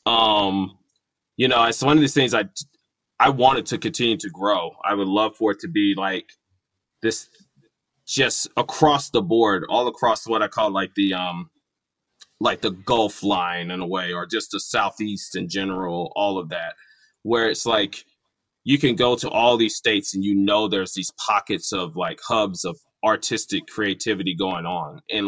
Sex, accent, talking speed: male, American, 185 wpm